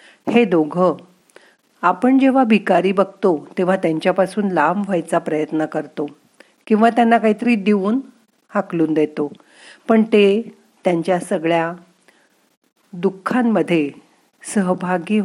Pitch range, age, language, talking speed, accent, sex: 165-215 Hz, 50-69, Marathi, 95 wpm, native, female